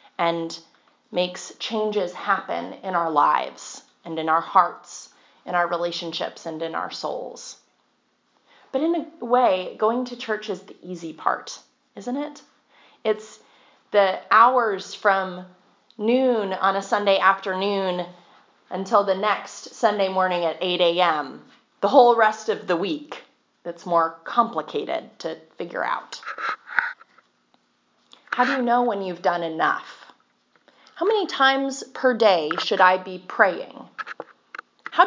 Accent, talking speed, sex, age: American, 135 wpm, female, 30-49